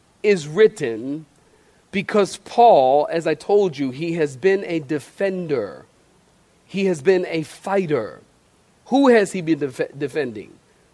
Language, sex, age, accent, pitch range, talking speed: English, male, 40-59, American, 160-230 Hz, 125 wpm